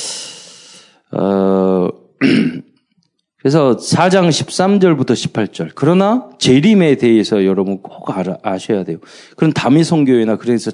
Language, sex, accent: Korean, male, native